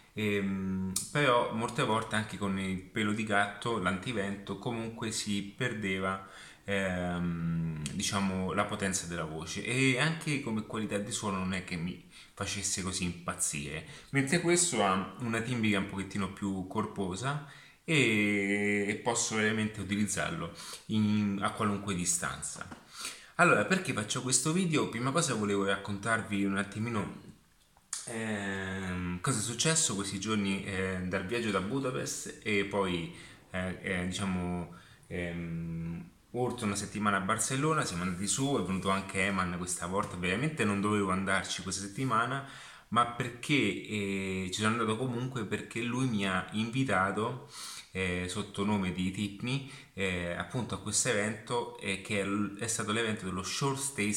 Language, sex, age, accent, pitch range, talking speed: Italian, male, 30-49, native, 95-115 Hz, 140 wpm